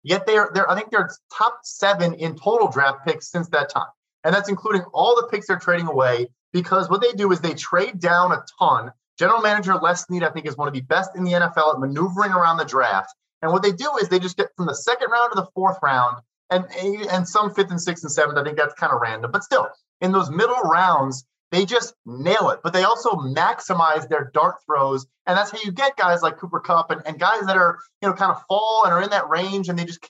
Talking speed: 255 wpm